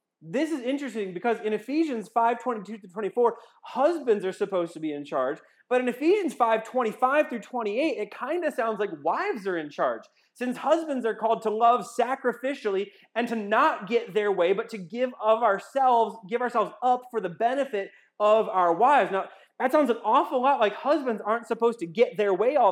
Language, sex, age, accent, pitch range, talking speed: English, male, 30-49, American, 205-250 Hz, 180 wpm